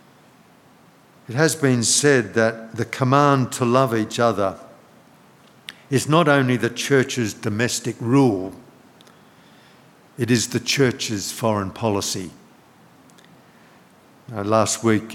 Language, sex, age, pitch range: English, male, 60-79, 110-140 Hz